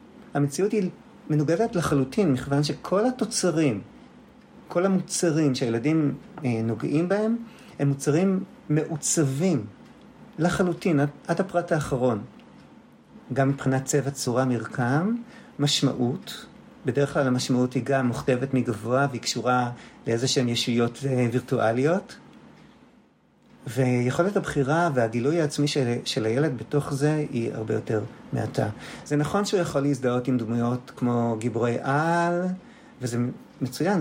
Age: 40-59